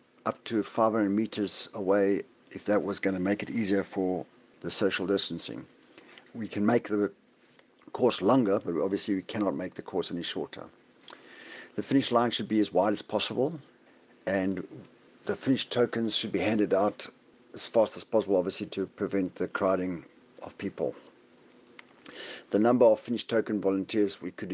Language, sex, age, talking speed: English, male, 60-79, 165 wpm